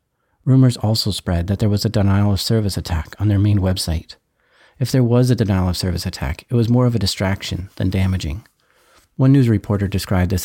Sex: male